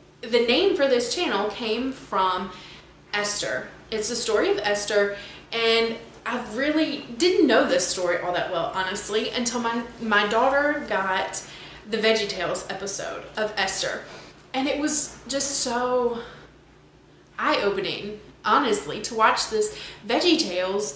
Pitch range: 205-265 Hz